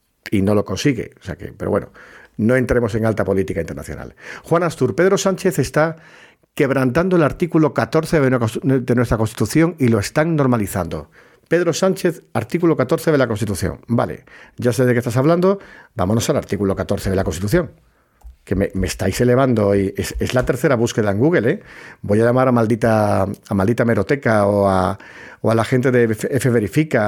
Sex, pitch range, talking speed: male, 100-145 Hz, 180 wpm